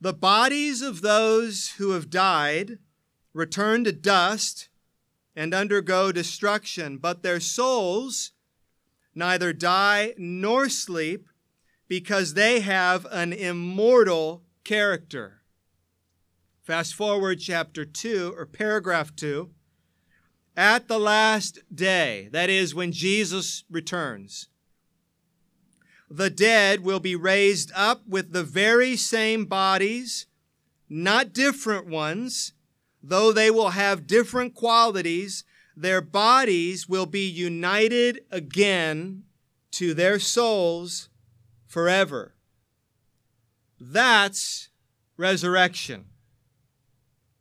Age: 40-59